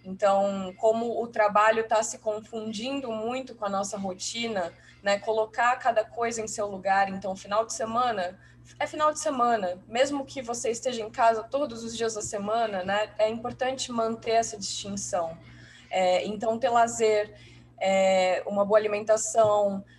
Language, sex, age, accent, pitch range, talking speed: Portuguese, female, 20-39, Brazilian, 190-230 Hz, 155 wpm